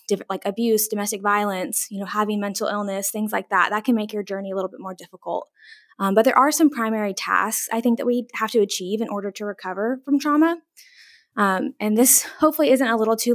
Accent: American